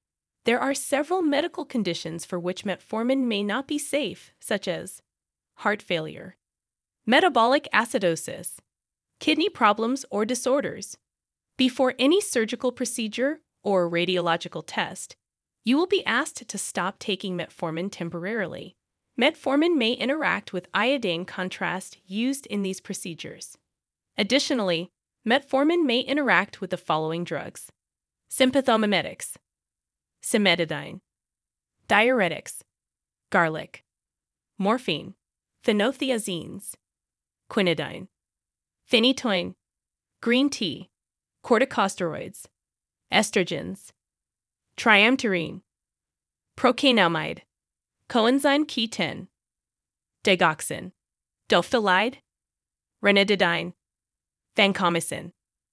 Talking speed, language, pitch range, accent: 80 wpm, English, 180-260 Hz, American